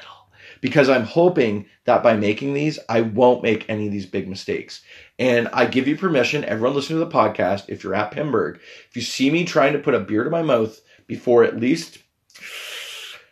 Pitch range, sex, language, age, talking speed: 115-160 Hz, male, English, 30-49, 200 wpm